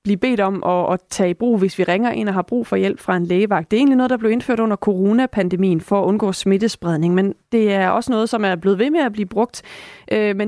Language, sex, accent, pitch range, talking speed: Danish, female, native, 190-230 Hz, 265 wpm